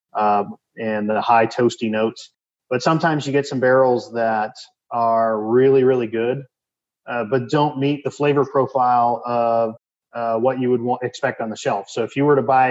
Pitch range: 115-135 Hz